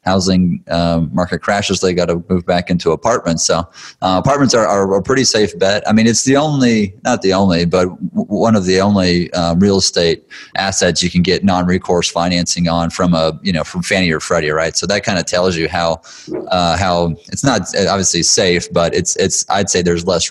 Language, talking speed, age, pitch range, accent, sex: English, 215 wpm, 30-49, 85-100 Hz, American, male